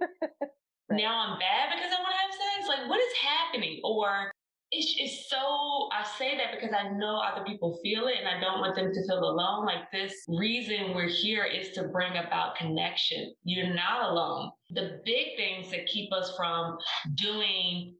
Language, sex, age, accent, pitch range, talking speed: English, female, 20-39, American, 175-225 Hz, 185 wpm